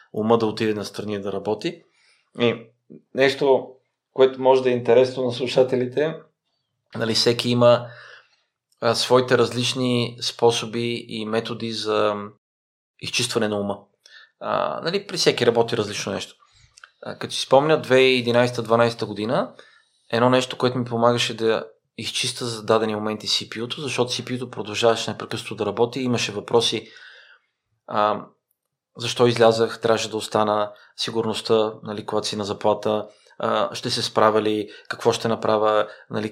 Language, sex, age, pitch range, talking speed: Bulgarian, male, 30-49, 110-125 Hz, 135 wpm